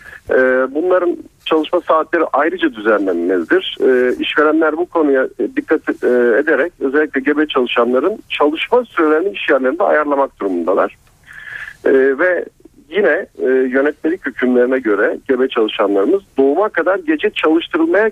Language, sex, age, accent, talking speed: Turkish, male, 50-69, native, 95 wpm